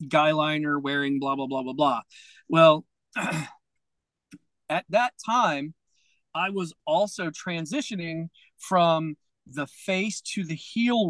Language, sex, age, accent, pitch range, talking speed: English, male, 40-59, American, 160-220 Hz, 115 wpm